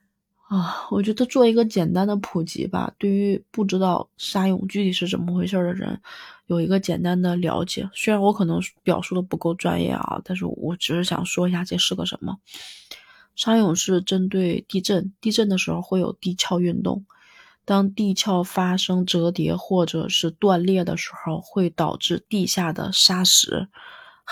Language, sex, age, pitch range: Chinese, female, 20-39, 175-200 Hz